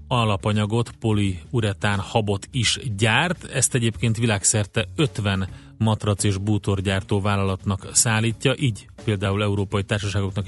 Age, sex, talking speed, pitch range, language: 30-49, male, 105 wpm, 100-120 Hz, Hungarian